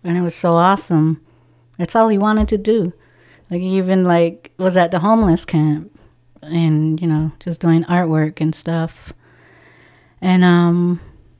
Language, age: English, 30-49